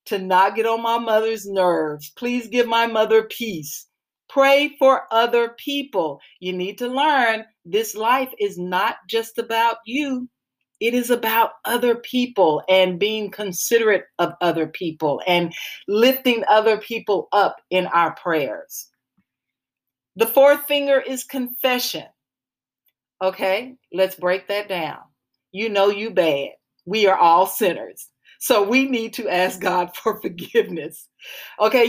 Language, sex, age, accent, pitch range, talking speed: English, female, 40-59, American, 180-240 Hz, 135 wpm